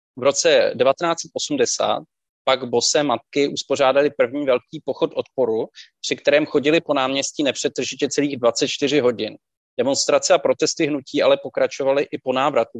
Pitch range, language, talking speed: 125-155 Hz, Czech, 135 wpm